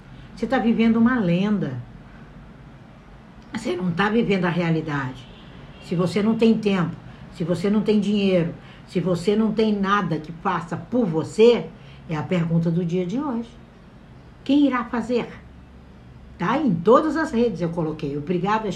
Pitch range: 170-225 Hz